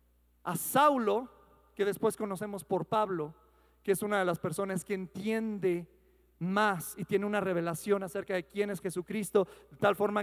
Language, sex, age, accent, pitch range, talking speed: Spanish, male, 40-59, Mexican, 160-235 Hz, 165 wpm